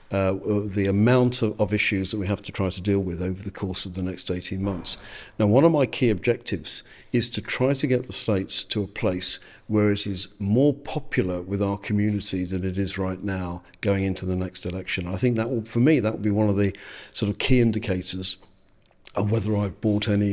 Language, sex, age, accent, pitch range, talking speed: English, male, 50-69, British, 95-115 Hz, 225 wpm